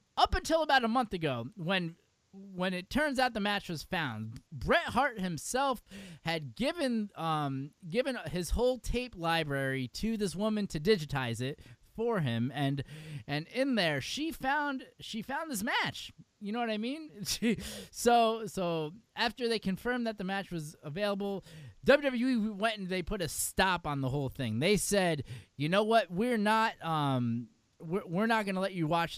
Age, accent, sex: 20-39, American, male